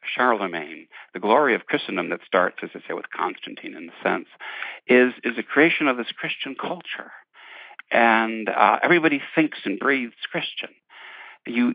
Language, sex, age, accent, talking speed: English, male, 60-79, American, 160 wpm